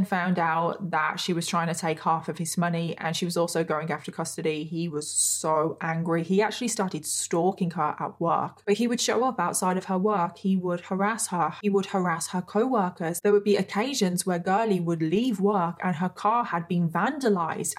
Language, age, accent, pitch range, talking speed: English, 20-39, British, 175-215 Hz, 215 wpm